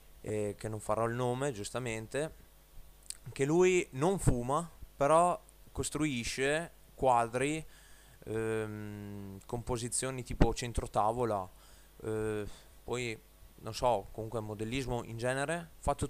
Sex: male